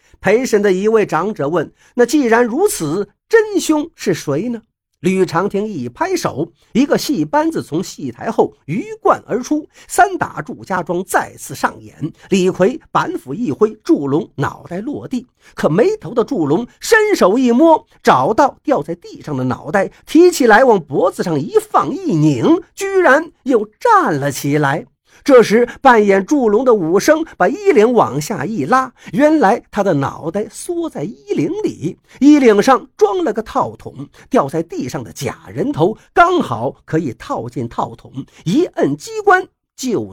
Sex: male